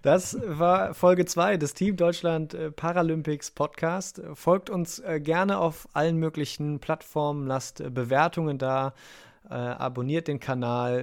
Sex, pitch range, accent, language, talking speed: male, 120-155 Hz, German, German, 120 wpm